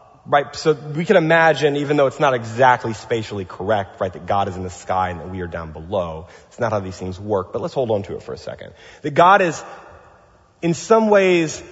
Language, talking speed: English, 235 wpm